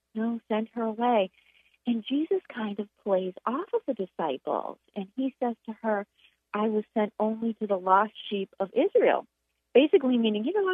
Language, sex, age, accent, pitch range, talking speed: English, female, 40-59, American, 185-245 Hz, 175 wpm